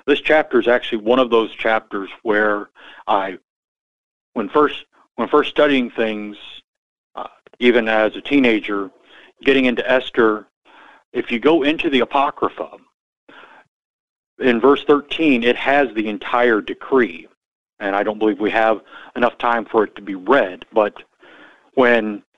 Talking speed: 140 wpm